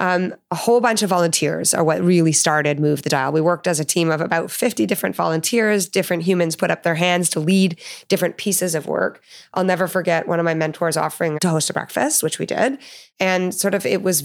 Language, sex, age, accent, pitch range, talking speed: English, female, 30-49, American, 155-185 Hz, 230 wpm